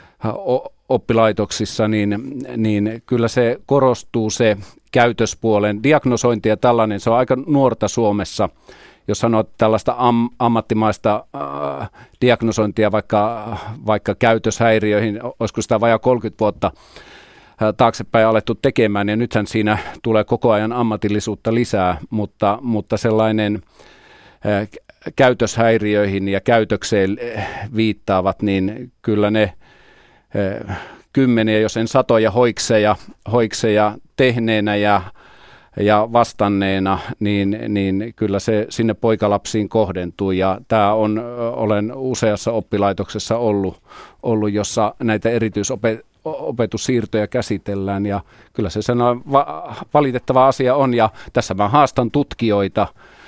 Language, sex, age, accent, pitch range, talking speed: Finnish, male, 40-59, native, 105-120 Hz, 110 wpm